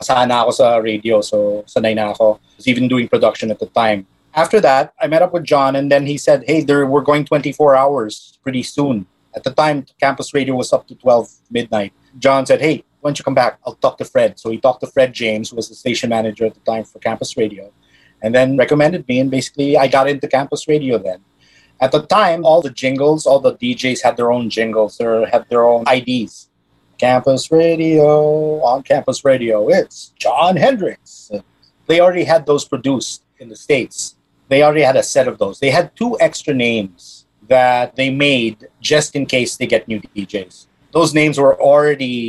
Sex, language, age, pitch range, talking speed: male, English, 30-49, 115-150 Hz, 195 wpm